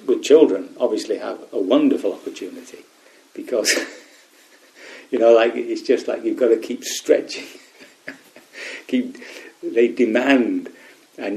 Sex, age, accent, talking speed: male, 50-69, British, 120 wpm